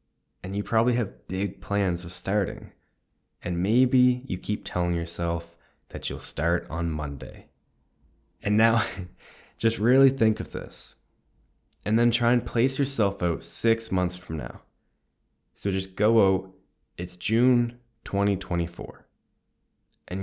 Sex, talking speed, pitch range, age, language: male, 135 wpm, 85-105 Hz, 20-39, English